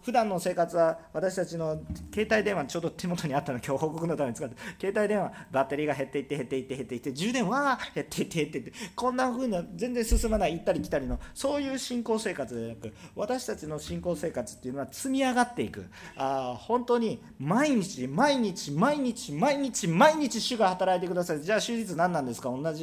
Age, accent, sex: 40-59, native, male